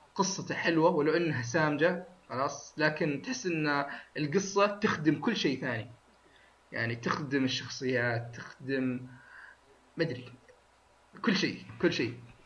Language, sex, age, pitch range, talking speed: Arabic, male, 20-39, 135-165 Hz, 110 wpm